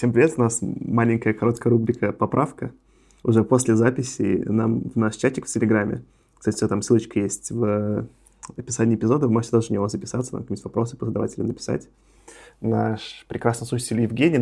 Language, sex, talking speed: Russian, male, 160 wpm